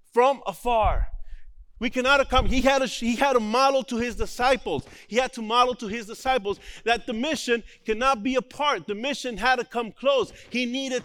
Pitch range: 205-255 Hz